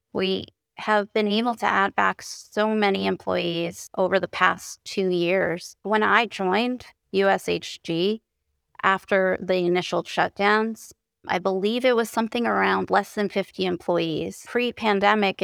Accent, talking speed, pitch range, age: American, 130 wpm, 180-215 Hz, 30-49